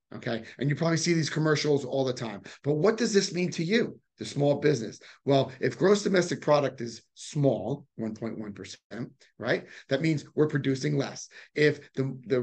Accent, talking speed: American, 180 wpm